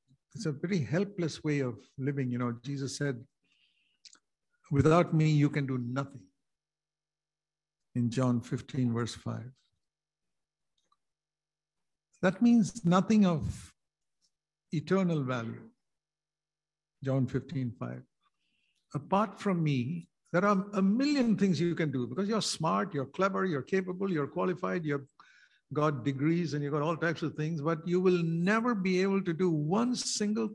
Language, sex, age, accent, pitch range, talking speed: English, male, 60-79, Indian, 145-200 Hz, 140 wpm